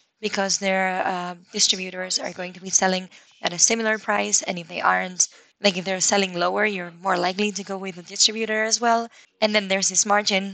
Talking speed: 210 wpm